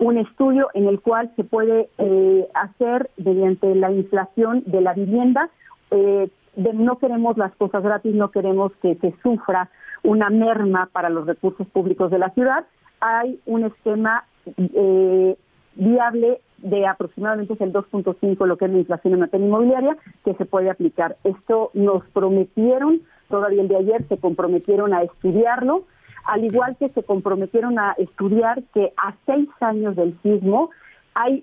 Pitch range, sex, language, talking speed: 195-240 Hz, female, Spanish, 160 wpm